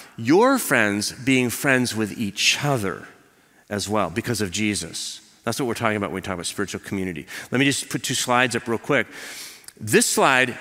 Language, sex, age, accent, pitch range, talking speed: English, male, 40-59, American, 130-200 Hz, 190 wpm